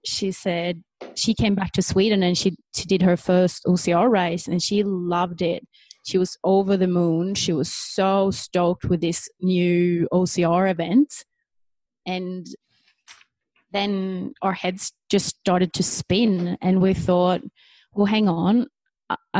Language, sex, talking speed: English, female, 150 wpm